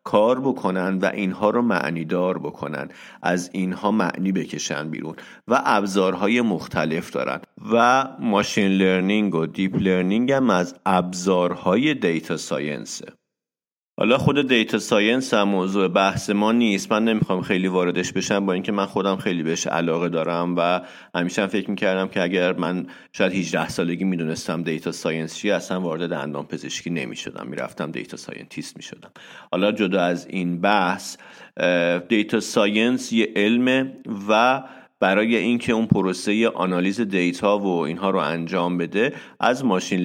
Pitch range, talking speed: 85-105 Hz, 140 wpm